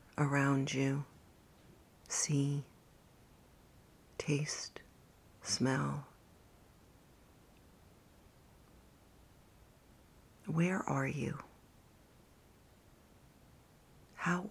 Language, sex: English, female